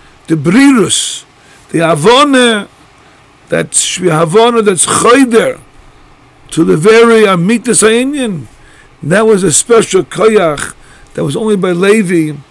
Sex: male